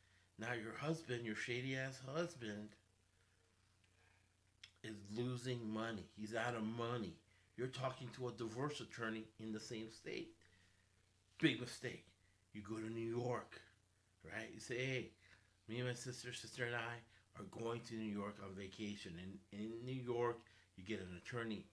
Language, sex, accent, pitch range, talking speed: English, male, American, 100-120 Hz, 155 wpm